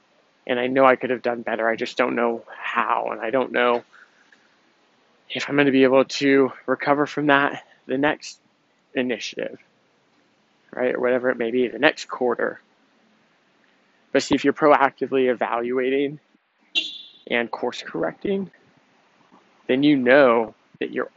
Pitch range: 120-135 Hz